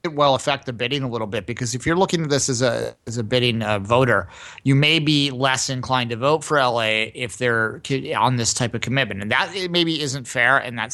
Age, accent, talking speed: 30-49, American, 240 wpm